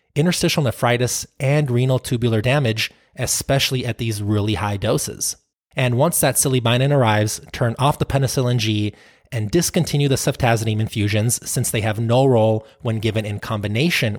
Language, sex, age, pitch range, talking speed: English, male, 20-39, 110-140 Hz, 150 wpm